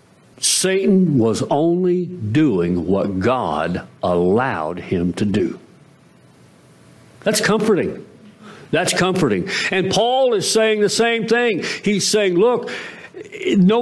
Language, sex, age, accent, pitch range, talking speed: English, male, 50-69, American, 130-215 Hz, 110 wpm